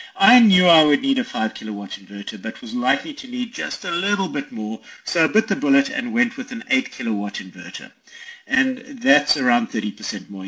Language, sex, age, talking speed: English, male, 50-69, 205 wpm